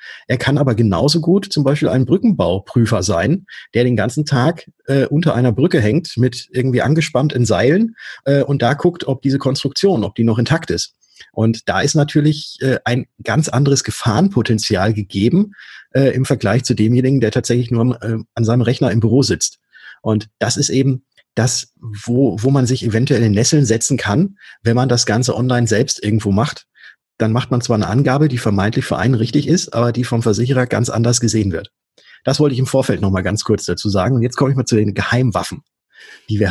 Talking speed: 200 wpm